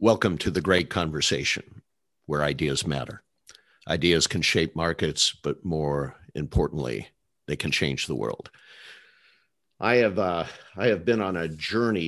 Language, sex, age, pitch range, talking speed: English, male, 50-69, 75-90 Hz, 145 wpm